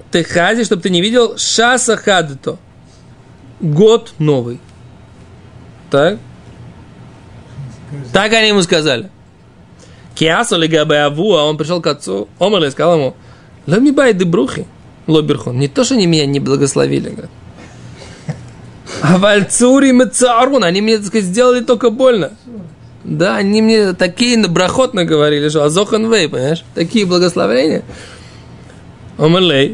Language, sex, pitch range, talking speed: Russian, male, 155-235 Hz, 115 wpm